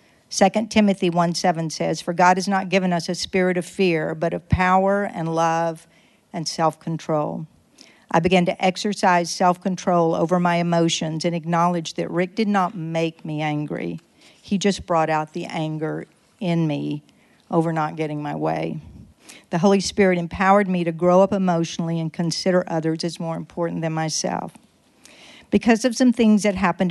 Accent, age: American, 50-69